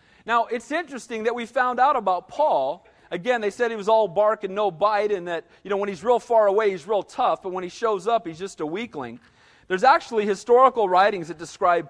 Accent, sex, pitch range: American, male, 200-265 Hz